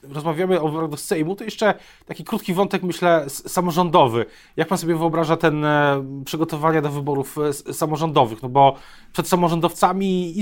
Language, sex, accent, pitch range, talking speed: Polish, male, native, 145-170 Hz, 150 wpm